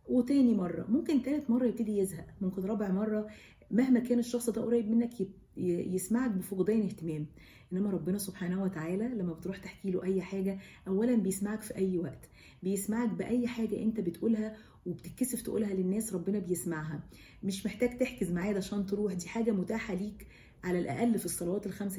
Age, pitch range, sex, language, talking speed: 40-59, 170-205 Hz, female, English, 160 wpm